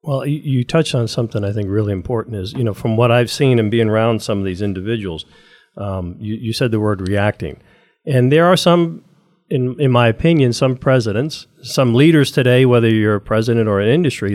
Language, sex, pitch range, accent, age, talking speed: English, male, 105-145 Hz, American, 50-69, 210 wpm